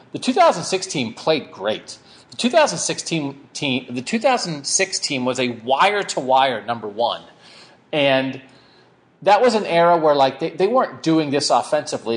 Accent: American